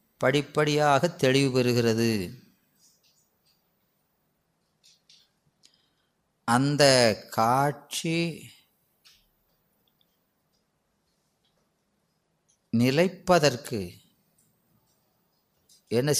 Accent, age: native, 30-49